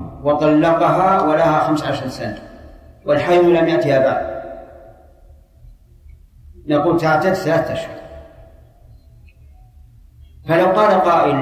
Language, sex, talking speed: Arabic, male, 85 wpm